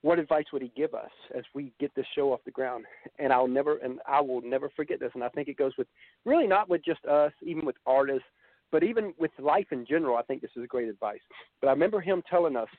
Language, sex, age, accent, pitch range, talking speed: English, male, 50-69, American, 135-205 Hz, 260 wpm